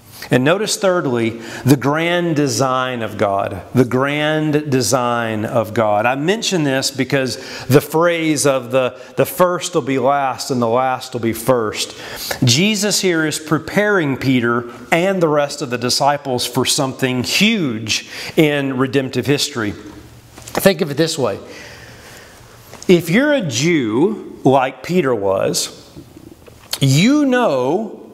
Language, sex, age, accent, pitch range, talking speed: English, male, 40-59, American, 130-175 Hz, 135 wpm